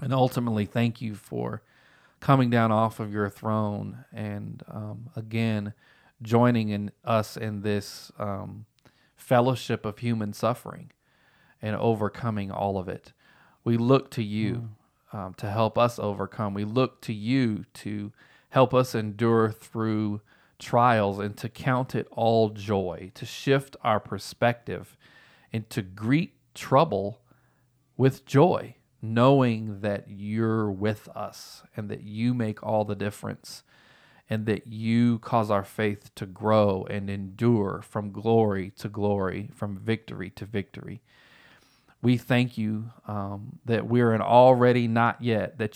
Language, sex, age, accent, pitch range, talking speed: English, male, 40-59, American, 105-120 Hz, 140 wpm